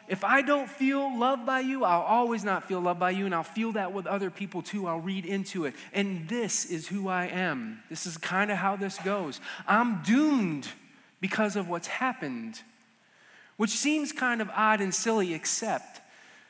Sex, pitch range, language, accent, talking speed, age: male, 180-220 Hz, English, American, 195 wpm, 30-49